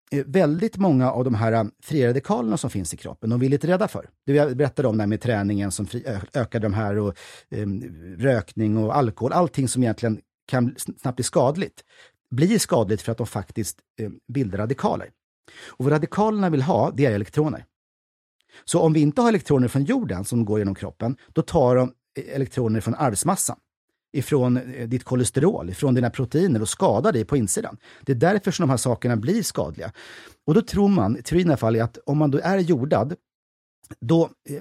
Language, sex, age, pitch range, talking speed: English, male, 40-59, 110-155 Hz, 190 wpm